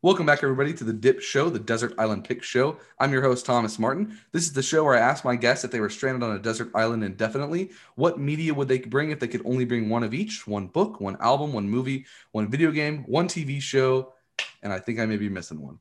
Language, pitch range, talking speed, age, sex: English, 115-140 Hz, 260 wpm, 20-39, male